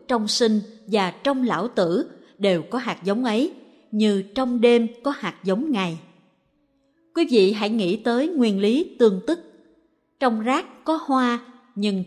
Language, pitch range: Vietnamese, 195-265 Hz